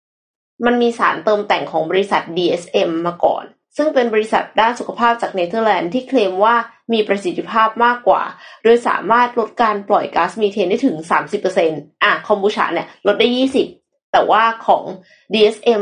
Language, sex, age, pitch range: Thai, female, 20-39, 195-250 Hz